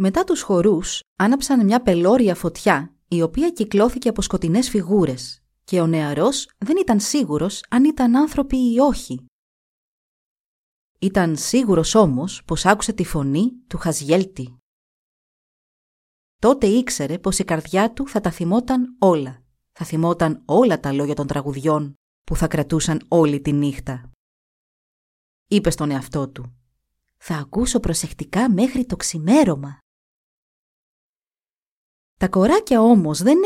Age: 30-49